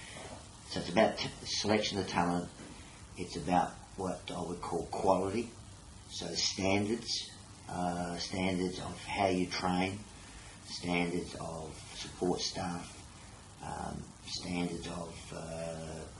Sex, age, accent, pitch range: male, 40-59, Australian, 85-100 Hz